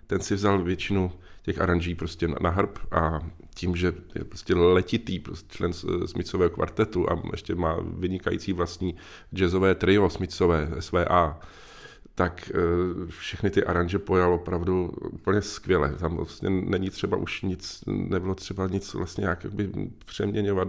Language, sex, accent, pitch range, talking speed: Czech, male, native, 90-105 Hz, 150 wpm